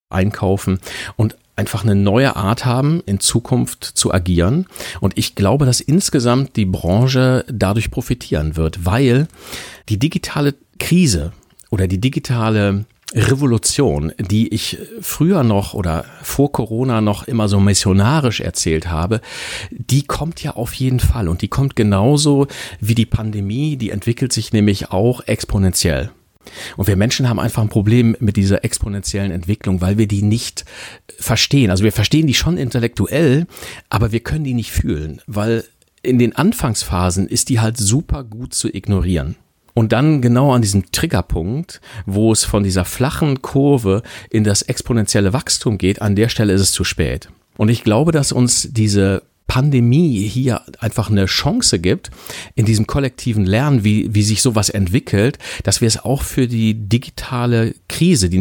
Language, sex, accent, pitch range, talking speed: German, male, German, 100-130 Hz, 160 wpm